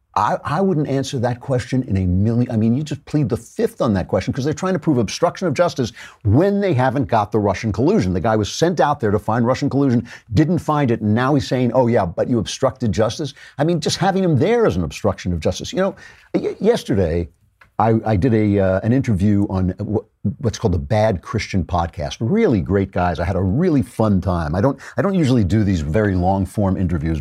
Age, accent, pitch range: 50-69, American, 95-140 Hz